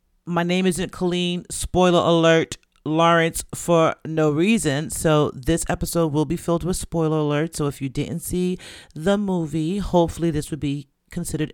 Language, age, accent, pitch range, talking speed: English, 40-59, American, 150-195 Hz, 160 wpm